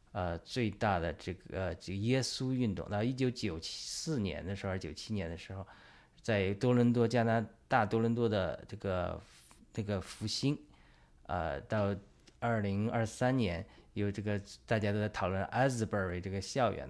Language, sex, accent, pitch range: Chinese, male, native, 95-120 Hz